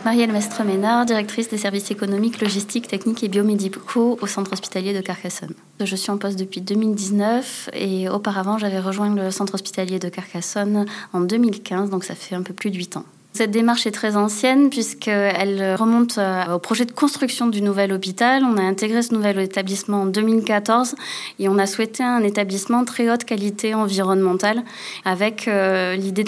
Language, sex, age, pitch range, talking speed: French, female, 20-39, 195-225 Hz, 175 wpm